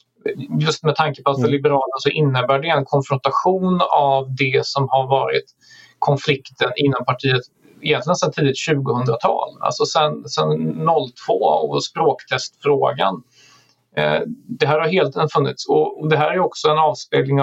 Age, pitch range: 30-49, 135-155 Hz